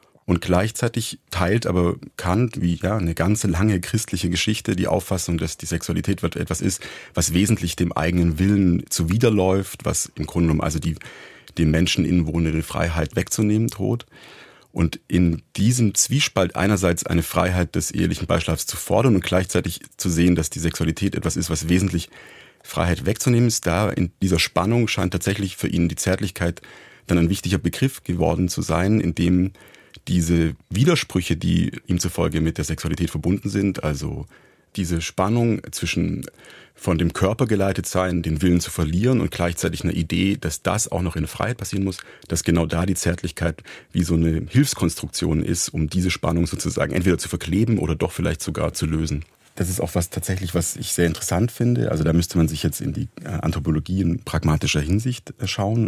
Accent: German